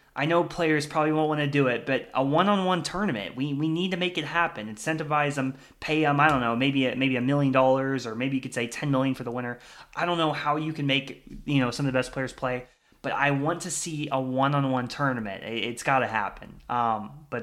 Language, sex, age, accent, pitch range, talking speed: English, male, 20-39, American, 130-155 Hz, 250 wpm